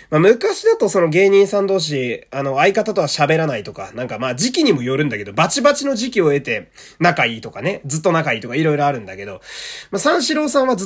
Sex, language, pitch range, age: male, Japanese, 120-180 Hz, 20-39